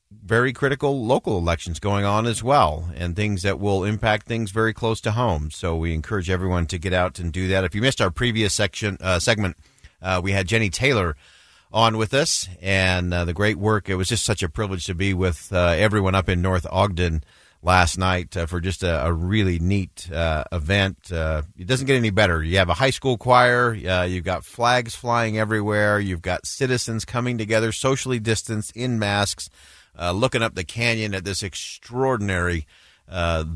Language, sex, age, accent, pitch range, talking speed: English, male, 40-59, American, 90-110 Hz, 200 wpm